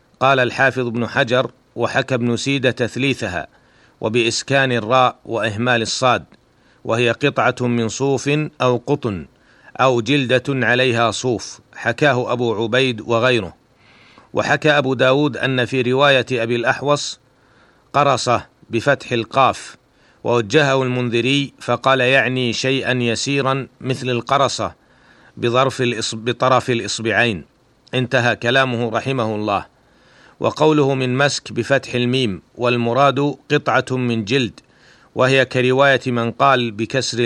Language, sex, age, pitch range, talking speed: Arabic, male, 40-59, 120-135 Hz, 105 wpm